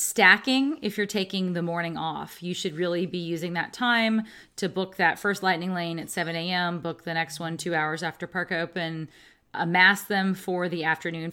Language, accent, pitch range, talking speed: English, American, 160-190 Hz, 195 wpm